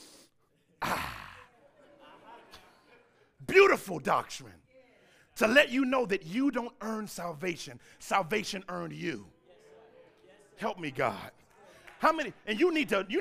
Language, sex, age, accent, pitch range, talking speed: English, male, 40-59, American, 175-280 Hz, 115 wpm